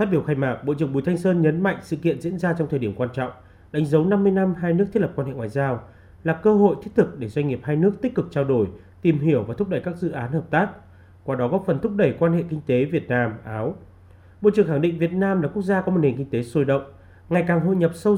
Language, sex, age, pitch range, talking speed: Vietnamese, male, 30-49, 120-175 Hz, 295 wpm